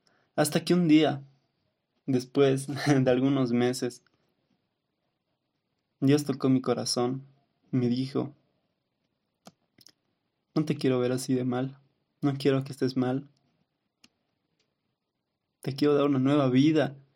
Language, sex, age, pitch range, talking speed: Spanish, male, 20-39, 130-150 Hz, 110 wpm